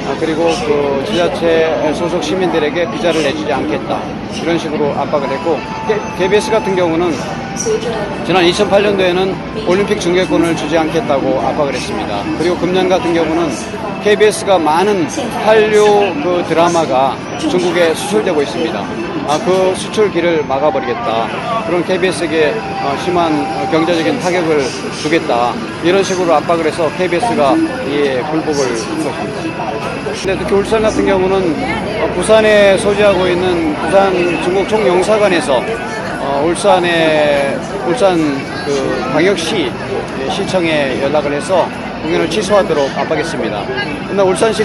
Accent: native